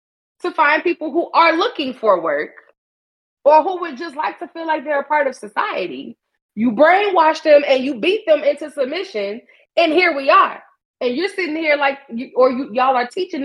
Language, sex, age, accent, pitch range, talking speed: English, female, 20-39, American, 220-315 Hz, 190 wpm